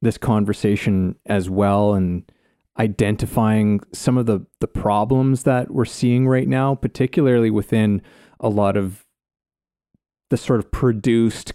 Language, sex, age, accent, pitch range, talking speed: English, male, 30-49, American, 105-130 Hz, 130 wpm